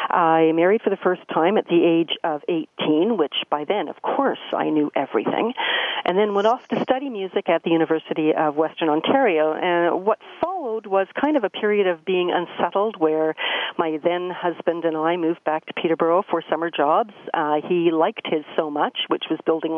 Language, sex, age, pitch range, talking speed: English, female, 50-69, 160-185 Hz, 195 wpm